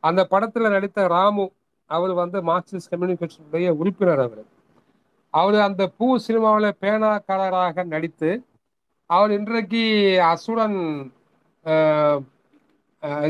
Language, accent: Tamil, native